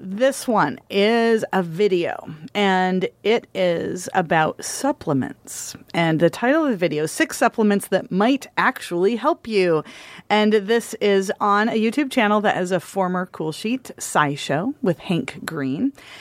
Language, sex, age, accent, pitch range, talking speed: English, female, 40-59, American, 170-220 Hz, 150 wpm